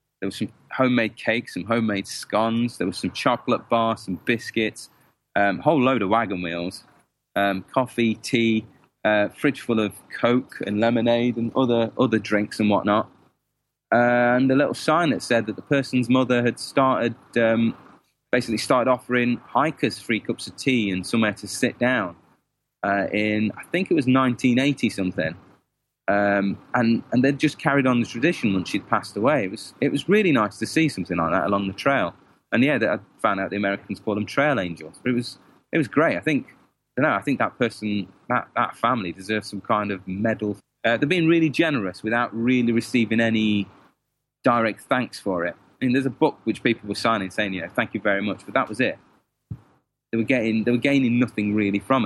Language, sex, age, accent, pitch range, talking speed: English, male, 20-39, British, 105-125 Hz, 205 wpm